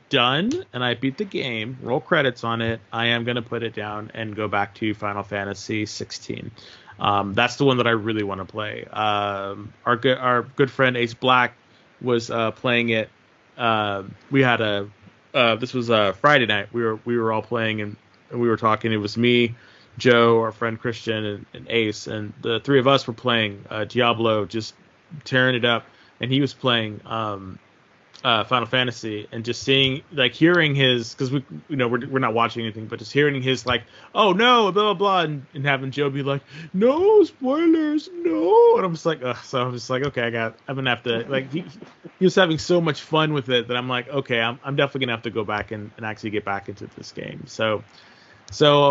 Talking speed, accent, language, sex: 220 wpm, American, English, male